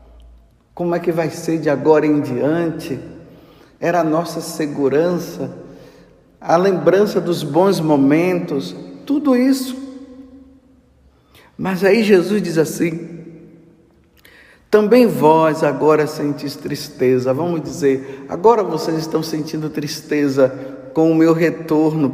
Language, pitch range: Portuguese, 140-195 Hz